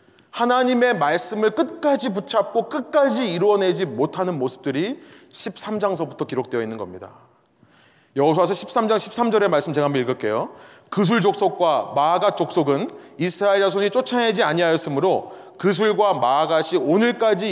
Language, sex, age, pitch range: Korean, male, 30-49, 180-225 Hz